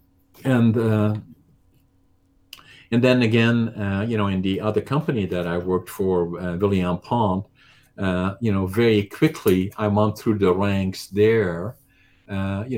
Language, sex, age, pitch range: English, male, 50-69, 95-110 Hz